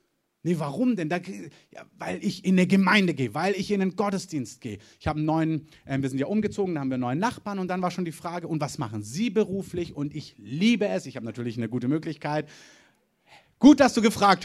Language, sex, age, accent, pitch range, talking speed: German, male, 30-49, German, 140-200 Hz, 235 wpm